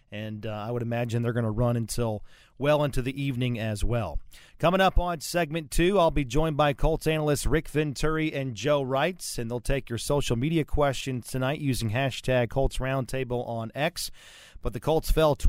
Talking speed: 195 wpm